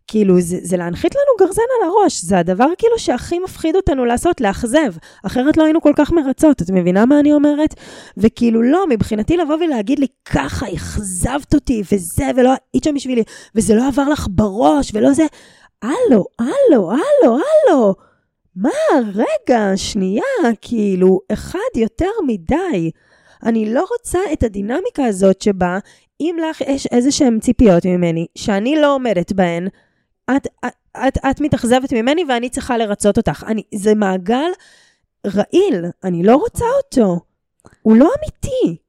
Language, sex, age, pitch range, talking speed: Hebrew, female, 20-39, 205-295 Hz, 150 wpm